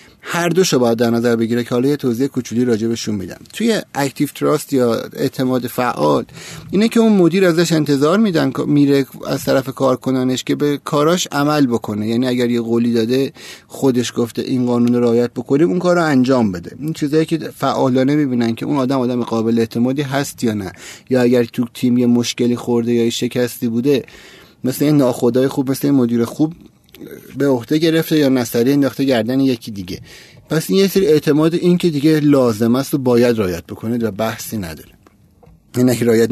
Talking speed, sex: 185 wpm, male